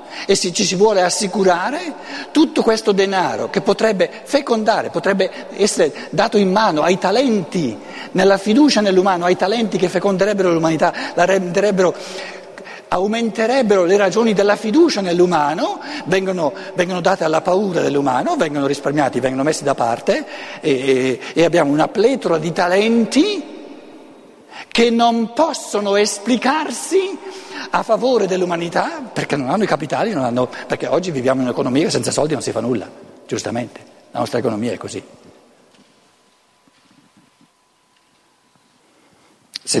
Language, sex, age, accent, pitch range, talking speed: Italian, male, 60-79, native, 160-220 Hz, 130 wpm